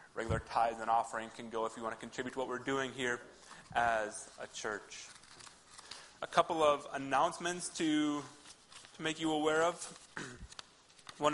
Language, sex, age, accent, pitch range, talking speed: English, male, 30-49, American, 125-145 Hz, 160 wpm